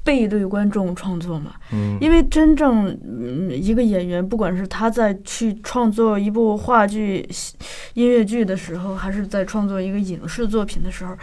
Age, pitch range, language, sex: 20-39, 185-230 Hz, Chinese, female